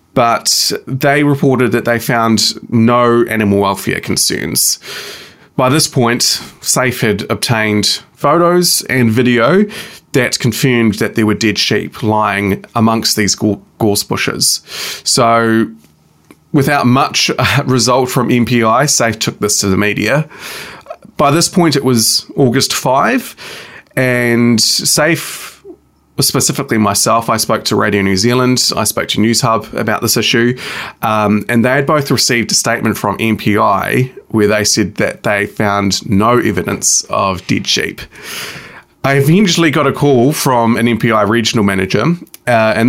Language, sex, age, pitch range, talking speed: English, male, 20-39, 110-135 Hz, 140 wpm